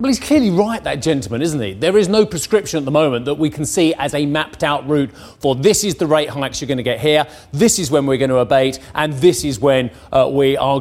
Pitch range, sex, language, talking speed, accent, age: 130-175 Hz, male, English, 270 wpm, British, 30-49